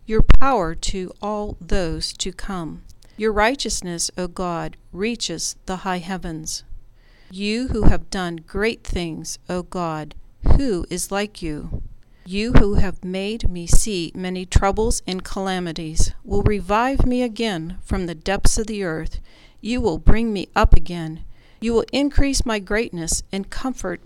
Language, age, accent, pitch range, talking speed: English, 40-59, American, 170-215 Hz, 150 wpm